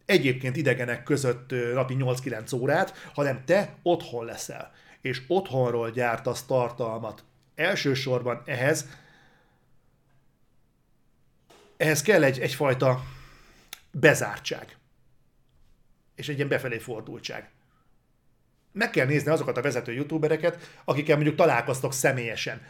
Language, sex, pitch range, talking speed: Hungarian, male, 125-155 Hz, 100 wpm